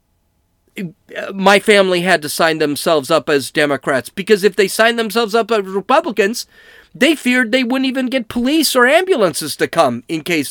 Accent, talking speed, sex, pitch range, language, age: American, 170 wpm, male, 175-270 Hz, English, 40-59